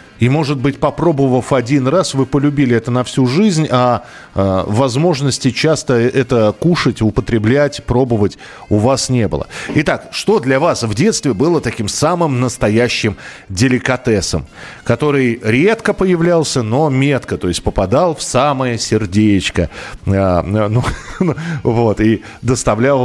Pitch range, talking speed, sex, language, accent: 110-145 Hz, 125 wpm, male, Russian, native